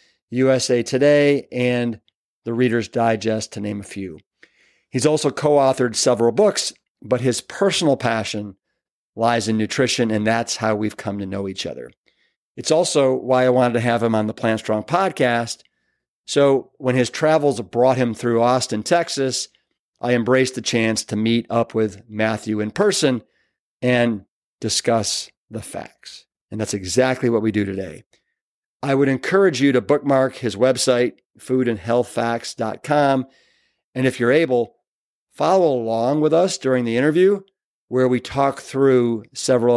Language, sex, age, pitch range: English, male, 50-69, 110-135 Hz